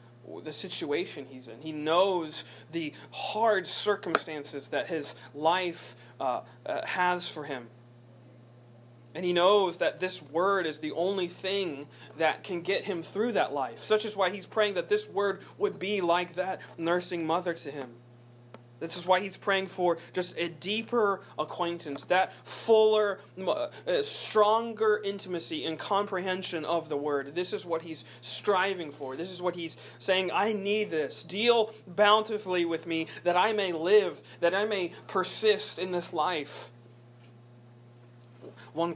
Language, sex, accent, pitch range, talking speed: English, male, American, 140-190 Hz, 155 wpm